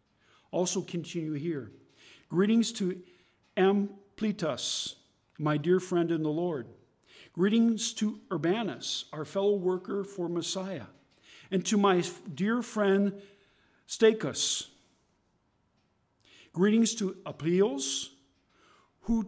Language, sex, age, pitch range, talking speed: English, male, 50-69, 145-195 Hz, 95 wpm